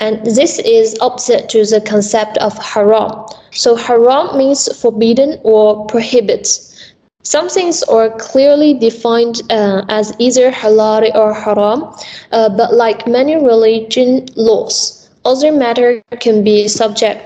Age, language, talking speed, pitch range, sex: 10-29, Malay, 130 wpm, 215-255 Hz, female